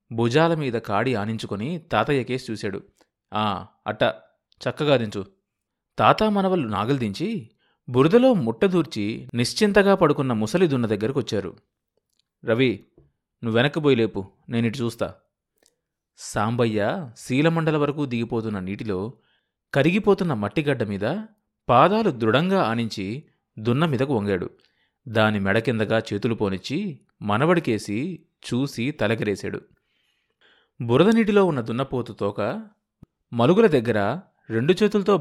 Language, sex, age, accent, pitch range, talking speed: Telugu, male, 30-49, native, 110-165 Hz, 85 wpm